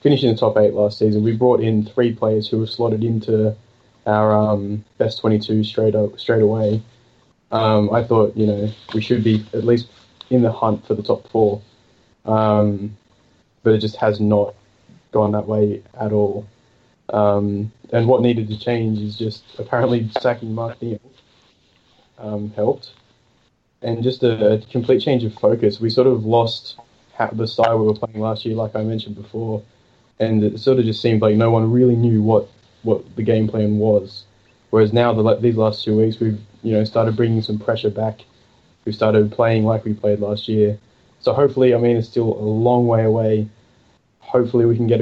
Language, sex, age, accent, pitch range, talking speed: English, male, 20-39, Australian, 105-115 Hz, 190 wpm